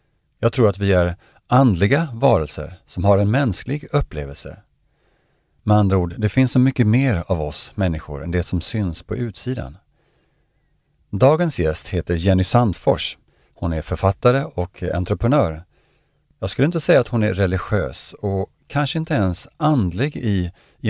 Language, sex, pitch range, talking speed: Swedish, male, 90-125 Hz, 155 wpm